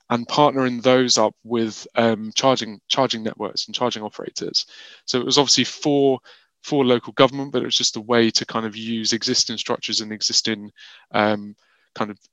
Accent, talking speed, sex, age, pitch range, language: British, 180 wpm, male, 20-39, 110-125 Hz, English